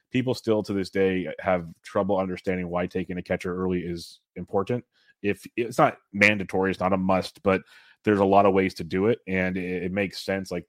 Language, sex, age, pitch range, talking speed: English, male, 30-49, 90-105 Hz, 215 wpm